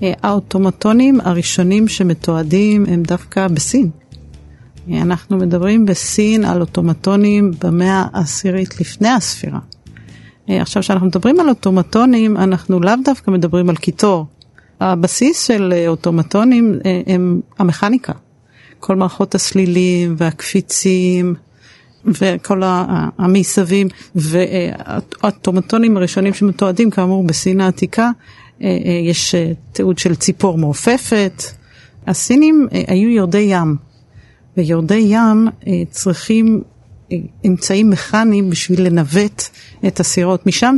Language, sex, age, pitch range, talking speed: Hebrew, female, 40-59, 175-210 Hz, 90 wpm